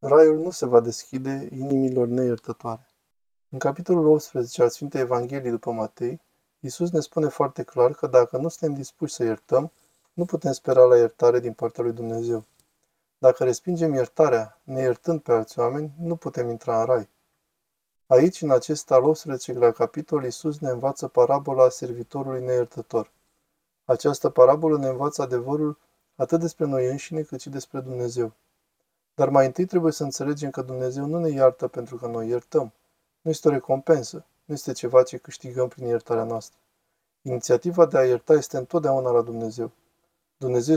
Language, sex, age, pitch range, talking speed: Romanian, male, 20-39, 125-165 Hz, 160 wpm